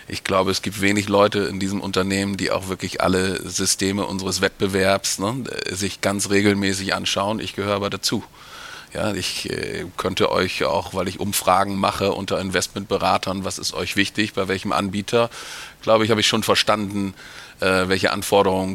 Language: German